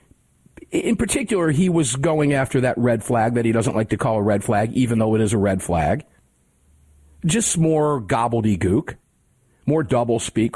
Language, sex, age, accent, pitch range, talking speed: English, male, 50-69, American, 110-155 Hz, 170 wpm